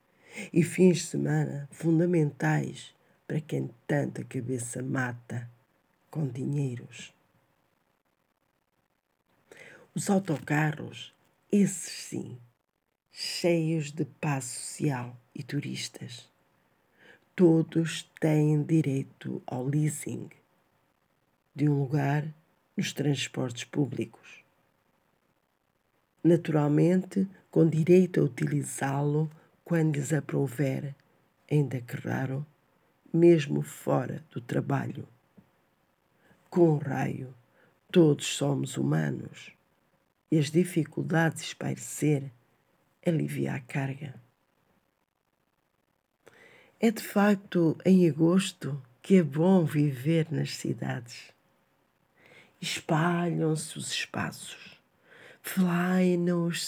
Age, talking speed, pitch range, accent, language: 50-69, 80 wpm, 135-170 Hz, Brazilian, Portuguese